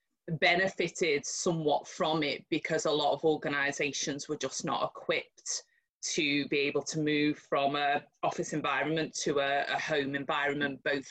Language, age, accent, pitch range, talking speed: English, 30-49, British, 155-185 Hz, 150 wpm